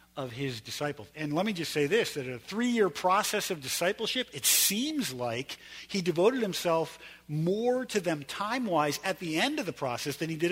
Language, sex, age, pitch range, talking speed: English, male, 50-69, 125-185 Hz, 195 wpm